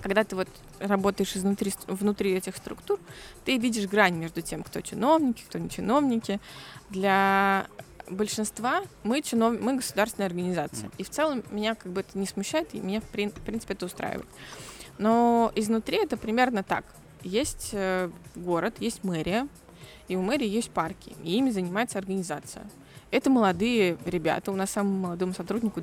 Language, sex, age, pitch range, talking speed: Russian, female, 20-39, 185-230 Hz, 155 wpm